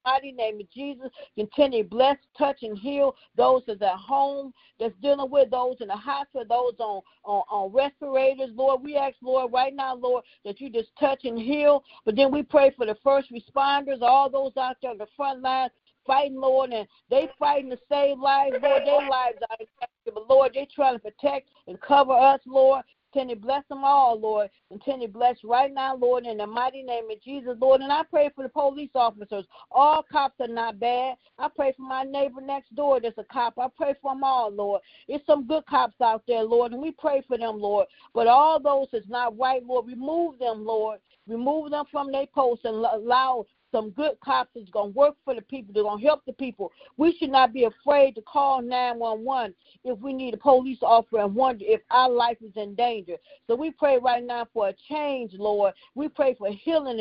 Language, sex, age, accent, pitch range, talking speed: English, female, 50-69, American, 235-275 Hz, 215 wpm